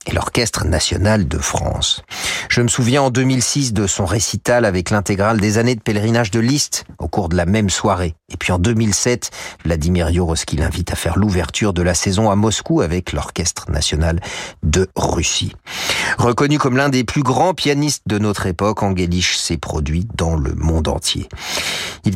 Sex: male